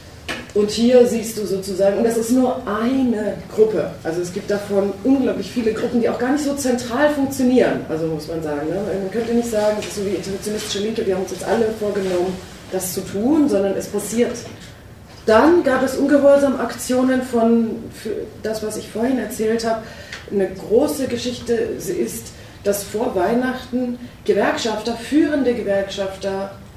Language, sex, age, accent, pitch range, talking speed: German, female, 30-49, German, 190-245 Hz, 170 wpm